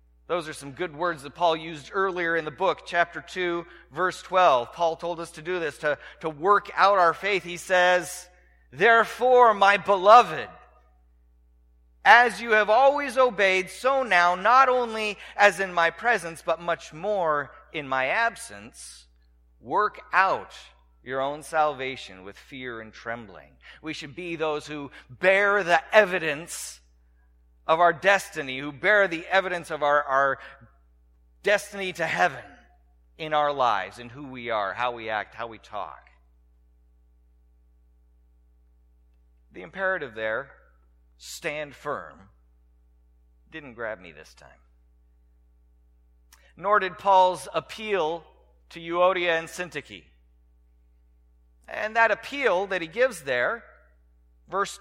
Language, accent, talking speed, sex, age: English, American, 135 wpm, male, 40-59